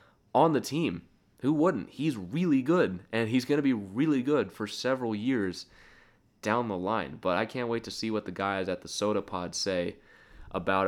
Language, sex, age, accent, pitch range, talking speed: English, male, 20-39, American, 90-100 Hz, 200 wpm